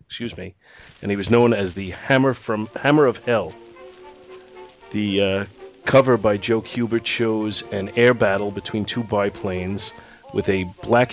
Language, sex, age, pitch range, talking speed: English, male, 30-49, 100-115 Hz, 155 wpm